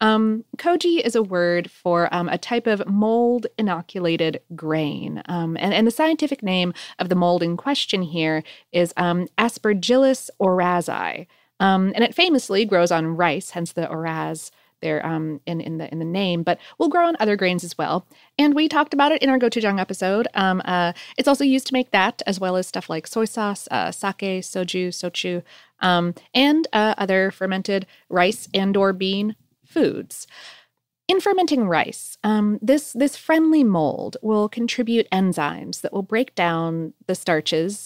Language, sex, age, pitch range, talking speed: English, female, 30-49, 175-235 Hz, 175 wpm